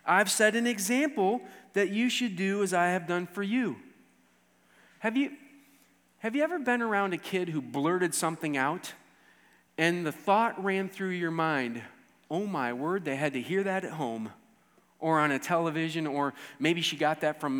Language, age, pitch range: English, 30-49, 150-210 Hz